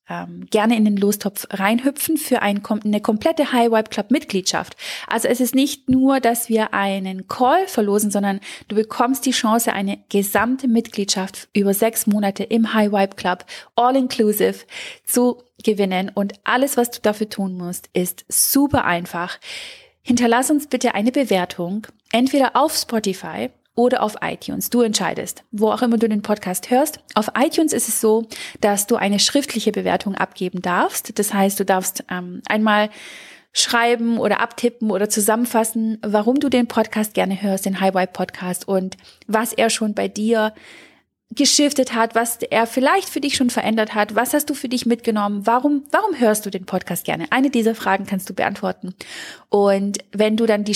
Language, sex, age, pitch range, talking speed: German, female, 30-49, 200-250 Hz, 170 wpm